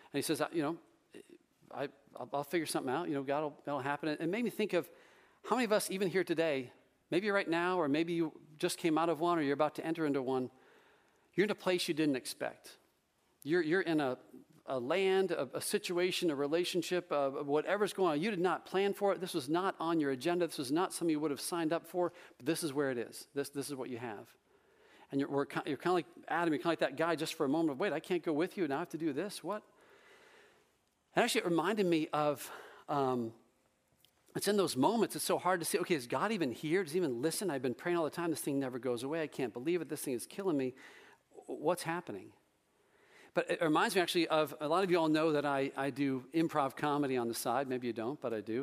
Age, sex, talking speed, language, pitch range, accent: 40-59, male, 260 wpm, English, 140-190 Hz, American